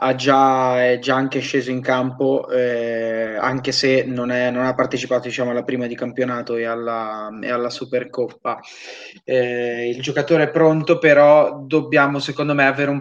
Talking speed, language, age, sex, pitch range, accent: 170 wpm, Italian, 20-39, male, 125-140 Hz, native